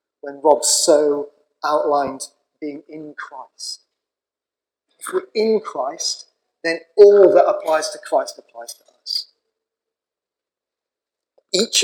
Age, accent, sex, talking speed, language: 40-59, British, male, 105 wpm, English